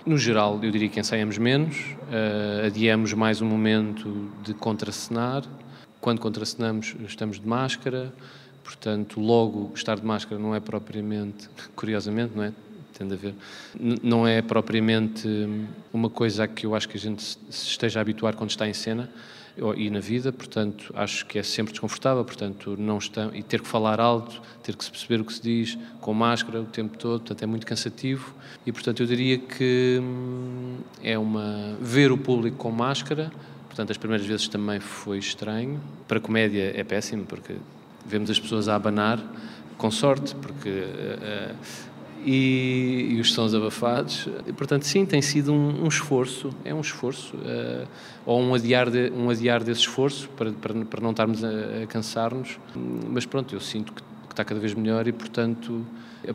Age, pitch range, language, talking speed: 20-39, 110-120 Hz, Portuguese, 180 wpm